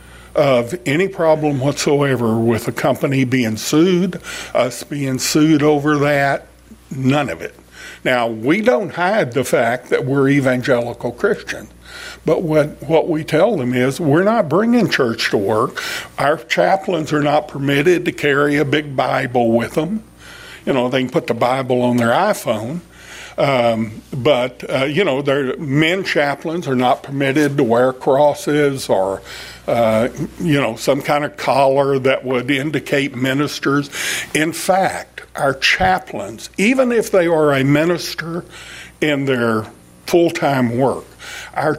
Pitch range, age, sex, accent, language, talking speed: 125-160 Hz, 60-79, male, American, English, 150 wpm